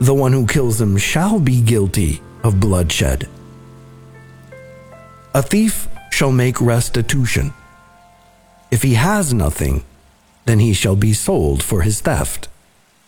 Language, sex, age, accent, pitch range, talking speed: English, male, 50-69, American, 105-140 Hz, 125 wpm